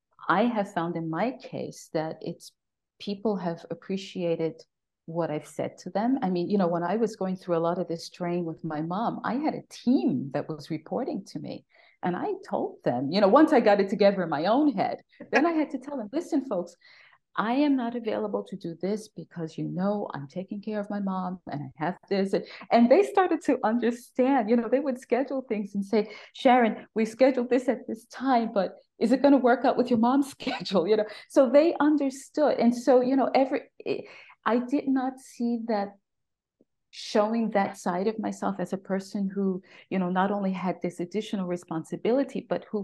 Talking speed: 210 wpm